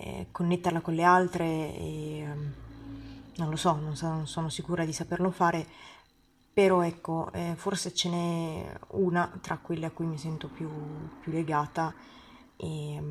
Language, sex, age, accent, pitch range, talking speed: Italian, female, 20-39, native, 165-195 Hz, 135 wpm